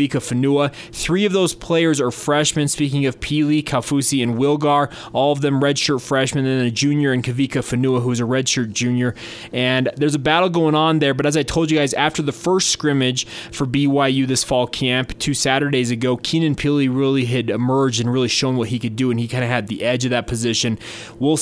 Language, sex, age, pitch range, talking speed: English, male, 20-39, 120-145 Hz, 215 wpm